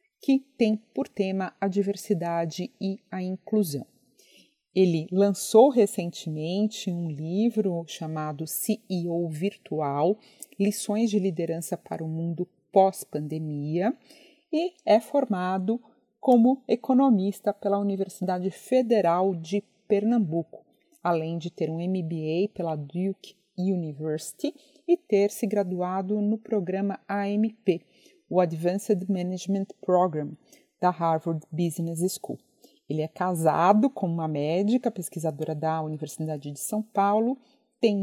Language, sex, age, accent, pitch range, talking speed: Portuguese, female, 40-59, Brazilian, 170-215 Hz, 110 wpm